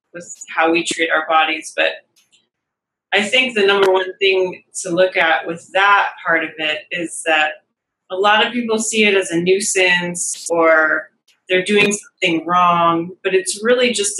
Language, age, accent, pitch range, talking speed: English, 20-39, American, 165-195 Hz, 175 wpm